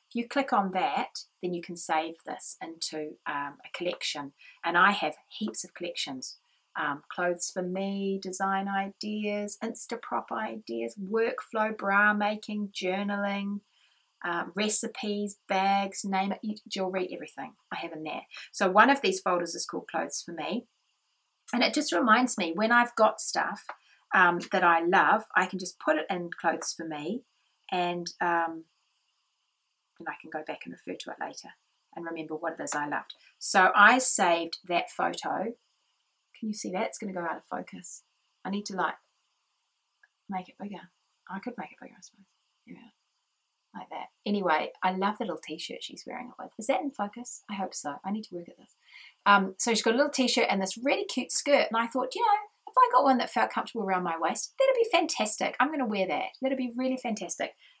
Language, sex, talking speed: English, female, 195 wpm